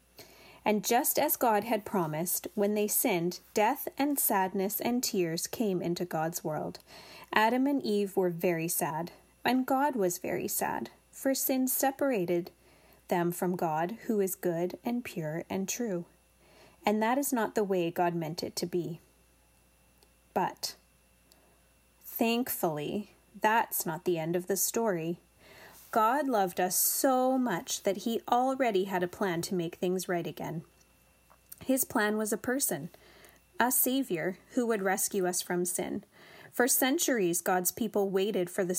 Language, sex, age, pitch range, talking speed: English, female, 30-49, 175-230 Hz, 150 wpm